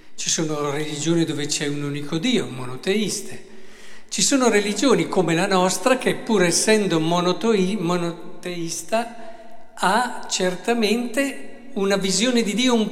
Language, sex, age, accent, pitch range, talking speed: Italian, male, 50-69, native, 140-195 Hz, 120 wpm